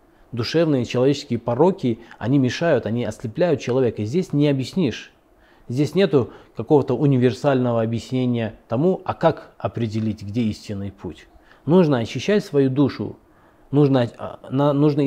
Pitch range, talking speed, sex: 115-145 Hz, 115 wpm, male